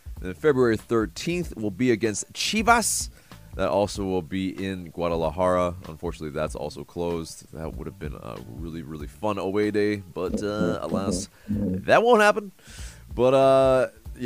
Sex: male